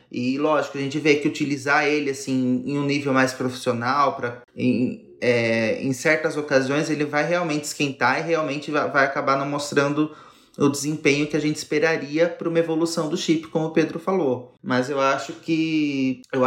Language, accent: Portuguese, Brazilian